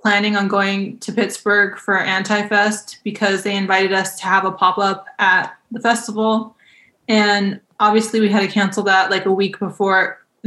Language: English